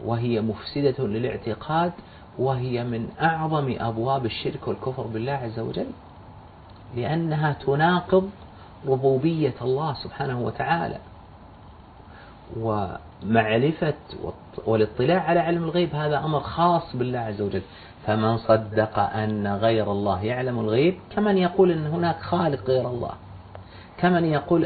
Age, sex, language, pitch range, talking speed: 40-59, male, Arabic, 105-165 Hz, 110 wpm